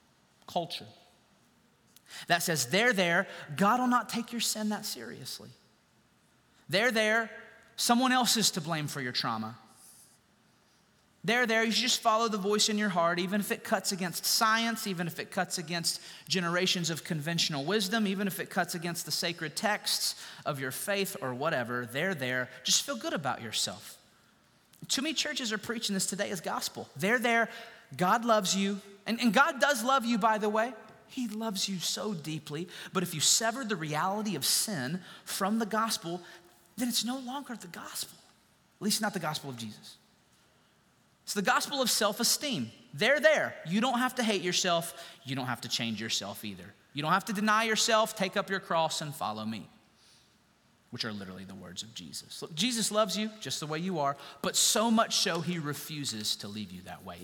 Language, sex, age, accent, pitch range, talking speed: English, male, 30-49, American, 165-225 Hz, 185 wpm